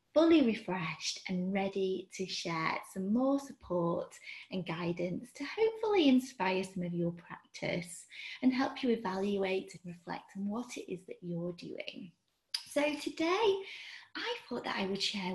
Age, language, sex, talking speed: 20-39, English, female, 155 wpm